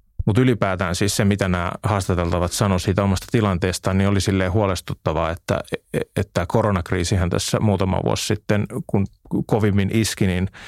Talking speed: 140 wpm